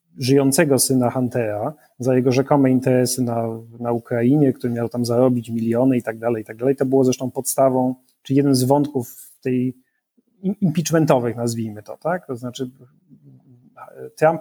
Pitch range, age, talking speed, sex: 125-155 Hz, 30-49, 150 wpm, male